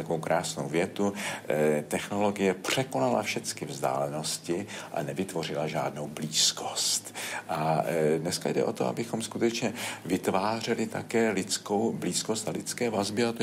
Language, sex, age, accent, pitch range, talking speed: Czech, male, 50-69, native, 85-110 Hz, 130 wpm